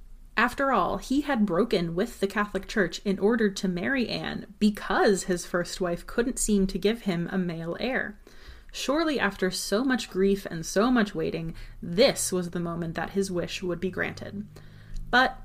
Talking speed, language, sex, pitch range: 180 wpm, English, female, 180-220 Hz